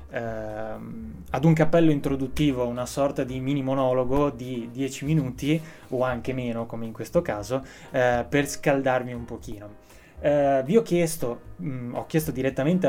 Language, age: Italian, 20-39